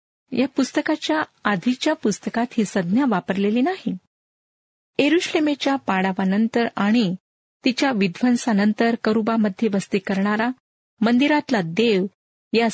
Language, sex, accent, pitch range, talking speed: Marathi, female, native, 200-250 Hz, 90 wpm